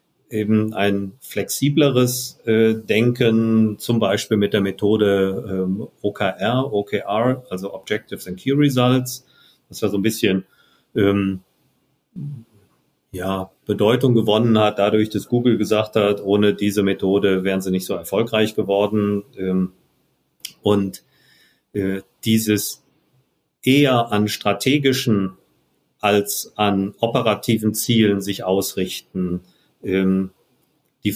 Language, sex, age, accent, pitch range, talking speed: German, male, 40-59, German, 100-120 Hz, 110 wpm